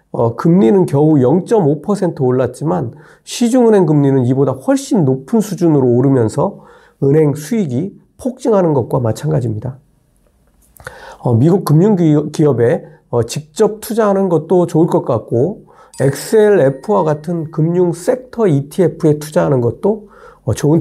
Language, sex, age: Korean, male, 40-59